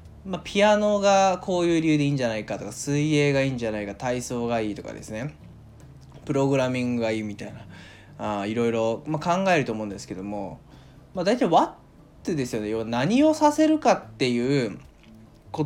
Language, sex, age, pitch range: Japanese, male, 20-39, 110-170 Hz